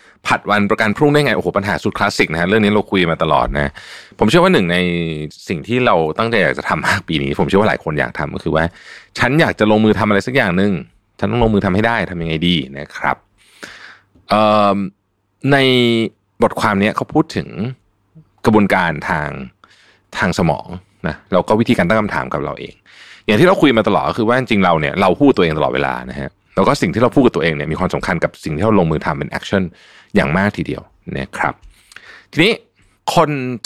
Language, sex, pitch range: Thai, male, 80-110 Hz